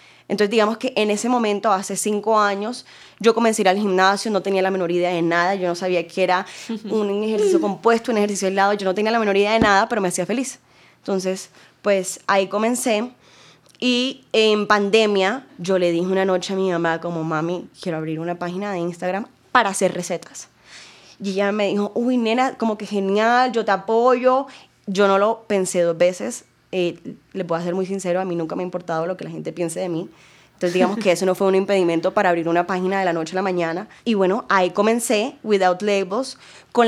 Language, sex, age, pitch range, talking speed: Spanish, female, 10-29, 180-210 Hz, 215 wpm